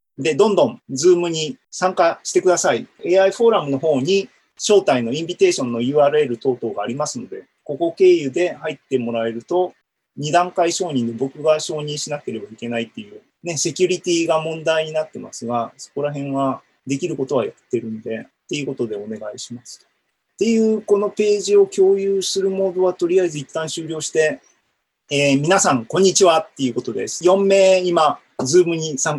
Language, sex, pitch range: Japanese, male, 140-205 Hz